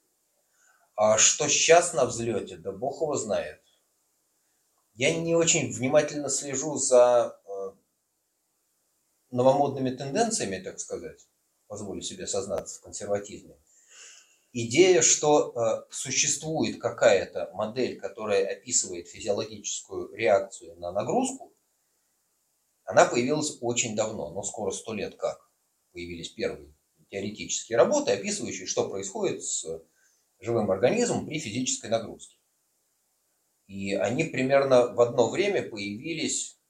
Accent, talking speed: native, 105 wpm